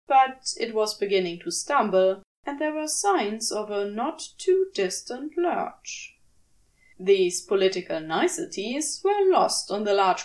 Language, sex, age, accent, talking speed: English, female, 20-39, German, 130 wpm